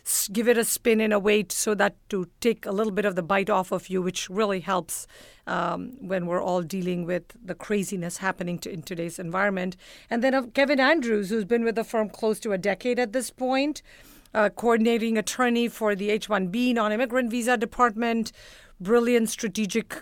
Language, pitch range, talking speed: English, 200-235 Hz, 190 wpm